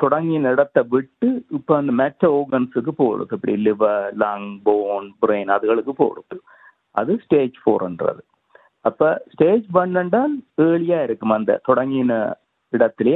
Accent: native